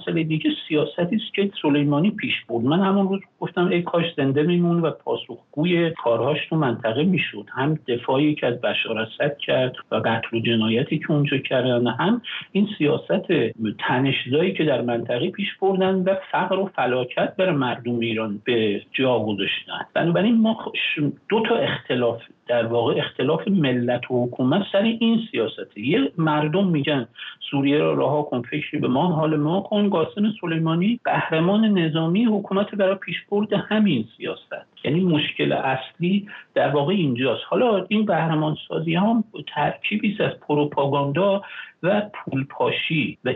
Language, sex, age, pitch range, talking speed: English, male, 50-69, 135-190 Hz, 150 wpm